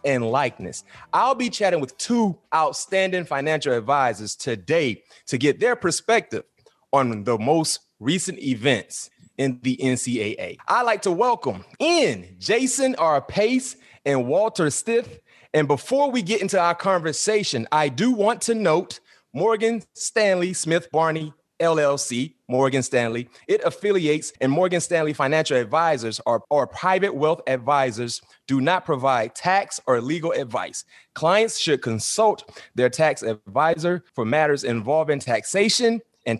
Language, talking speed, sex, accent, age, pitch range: English, 135 wpm, male, American, 30-49, 130-185 Hz